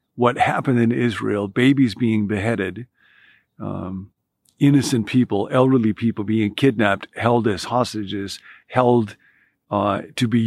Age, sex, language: 50-69, male, English